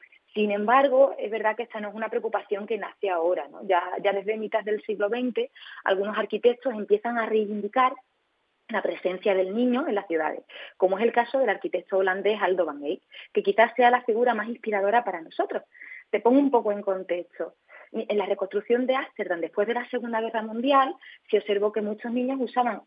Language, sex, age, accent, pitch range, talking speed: Spanish, female, 20-39, Spanish, 200-250 Hz, 195 wpm